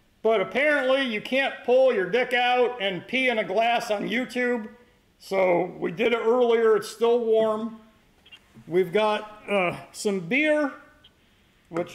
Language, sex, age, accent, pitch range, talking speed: English, male, 40-59, American, 175-225 Hz, 145 wpm